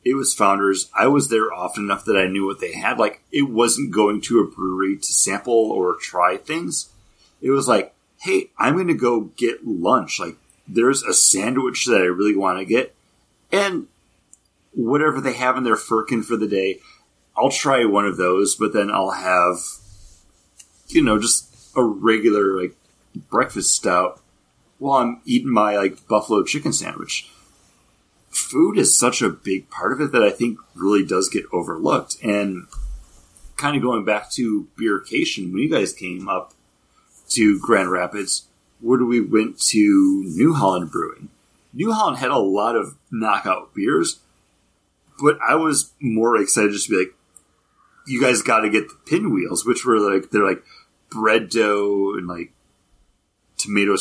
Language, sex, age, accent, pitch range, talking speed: English, male, 30-49, American, 95-125 Hz, 170 wpm